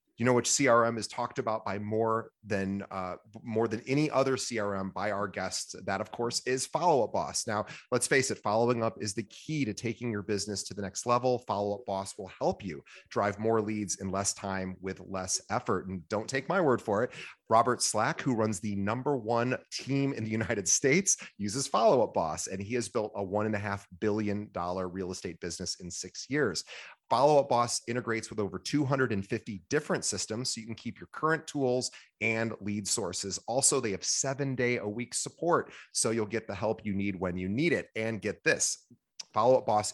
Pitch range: 100-120 Hz